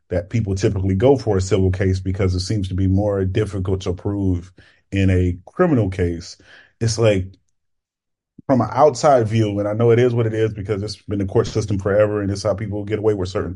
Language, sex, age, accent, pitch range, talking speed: English, male, 30-49, American, 95-115 Hz, 220 wpm